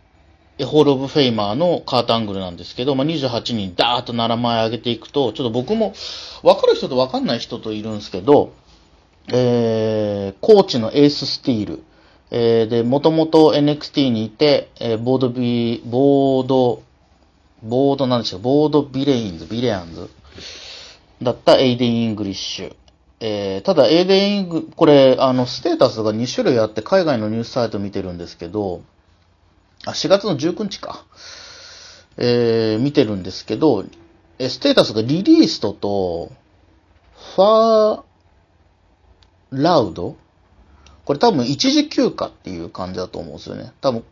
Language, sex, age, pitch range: Japanese, male, 40-59, 105-155 Hz